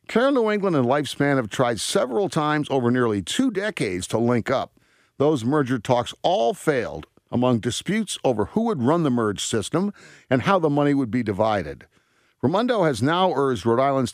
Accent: American